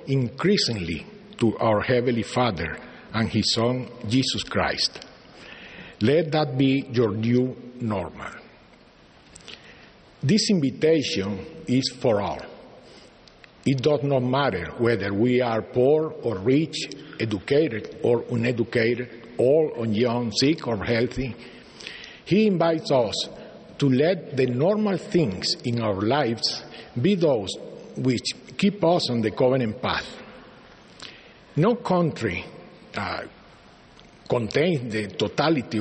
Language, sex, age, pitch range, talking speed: English, male, 50-69, 115-150 Hz, 110 wpm